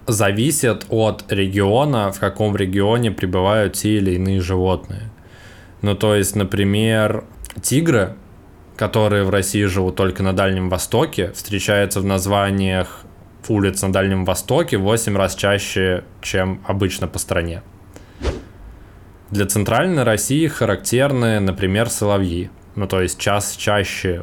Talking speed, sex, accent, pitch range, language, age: 120 wpm, male, native, 95-105 Hz, Russian, 20-39